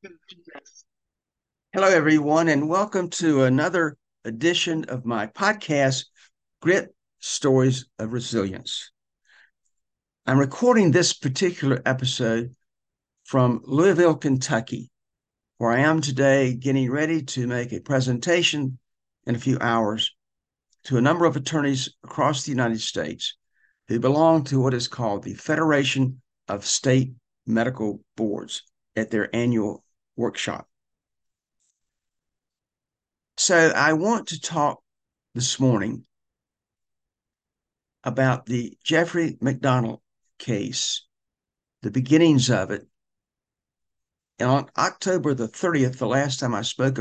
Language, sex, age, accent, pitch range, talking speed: English, male, 60-79, American, 120-155 Hz, 110 wpm